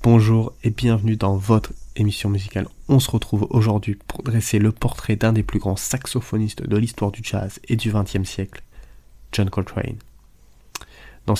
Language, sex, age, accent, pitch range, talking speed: French, male, 20-39, French, 100-115 Hz, 165 wpm